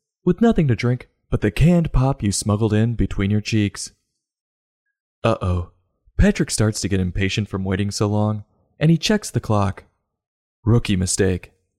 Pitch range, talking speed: 100-150 Hz, 165 wpm